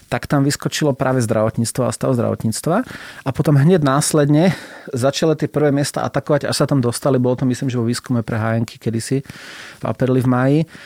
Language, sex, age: Slovak, male, 30-49